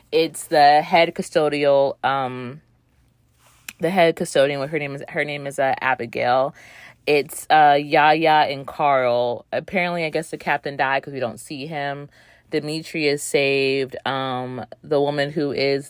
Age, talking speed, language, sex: 30-49, 155 wpm, English, female